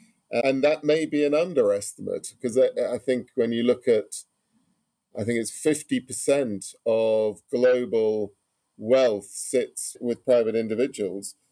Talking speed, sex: 125 wpm, male